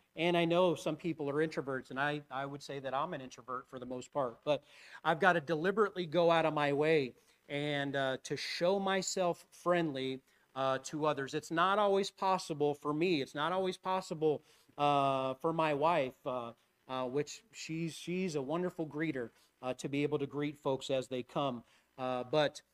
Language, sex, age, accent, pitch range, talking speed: English, male, 40-59, American, 130-170 Hz, 195 wpm